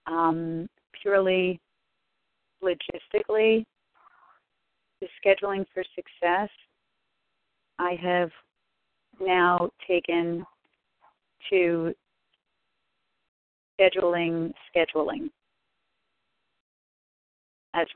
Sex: female